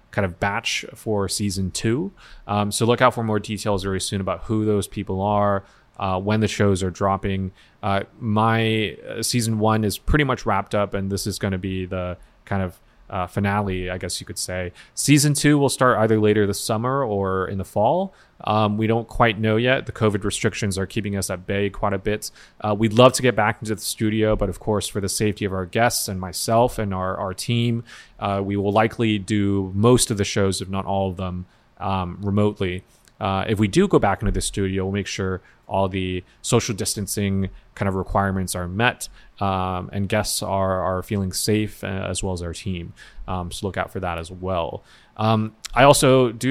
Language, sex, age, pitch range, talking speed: English, male, 20-39, 95-110 Hz, 215 wpm